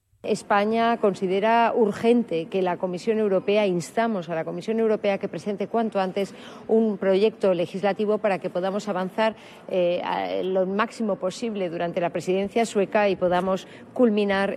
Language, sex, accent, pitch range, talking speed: Spanish, female, Spanish, 195-225 Hz, 140 wpm